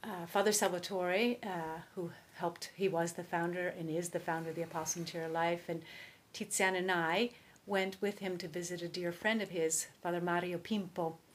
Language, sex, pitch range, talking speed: English, female, 170-210 Hz, 190 wpm